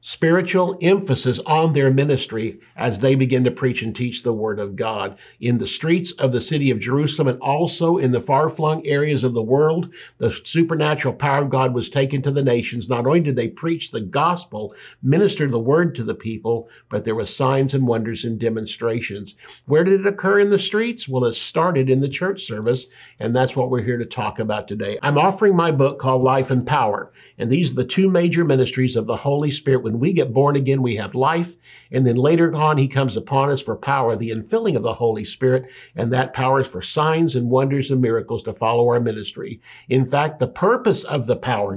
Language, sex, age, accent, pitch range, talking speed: English, male, 50-69, American, 120-150 Hz, 215 wpm